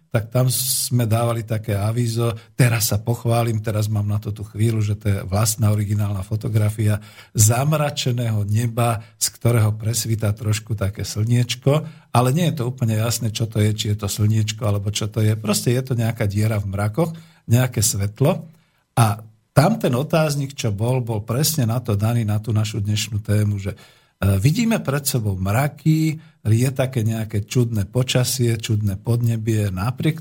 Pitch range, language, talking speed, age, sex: 105-130 Hz, Slovak, 165 wpm, 50-69, male